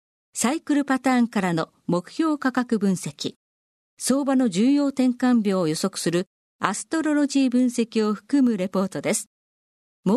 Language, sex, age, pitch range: Japanese, female, 40-59, 185-260 Hz